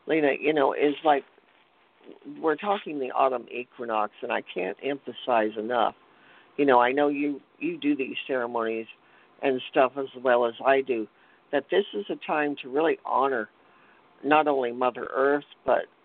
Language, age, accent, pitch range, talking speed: English, 50-69, American, 125-155 Hz, 165 wpm